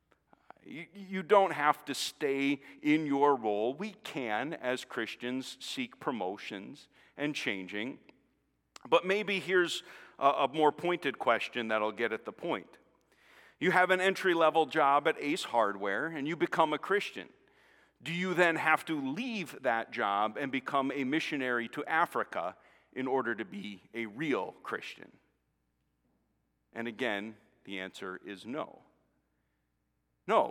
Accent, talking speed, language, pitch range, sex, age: American, 135 wpm, English, 105-170 Hz, male, 50-69